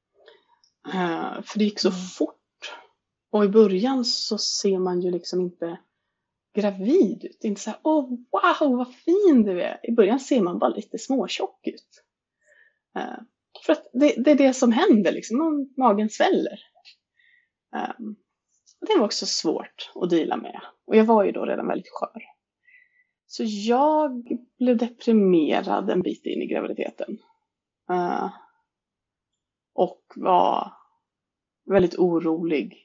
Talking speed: 140 wpm